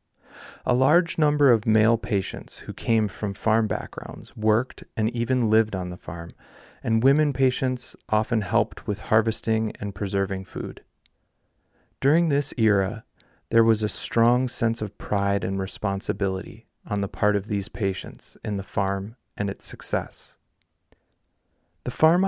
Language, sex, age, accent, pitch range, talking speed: English, male, 30-49, American, 100-115 Hz, 145 wpm